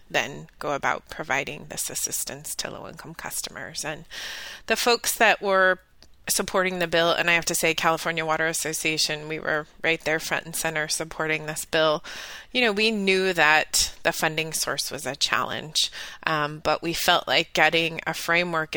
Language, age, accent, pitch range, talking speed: English, 20-39, American, 160-195 Hz, 175 wpm